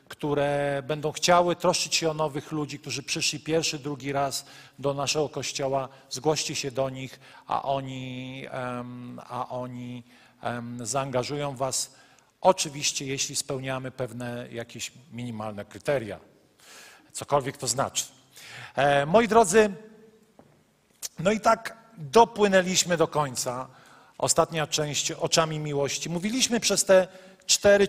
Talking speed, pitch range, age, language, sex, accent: 110 wpm, 140-180 Hz, 40-59, Polish, male, native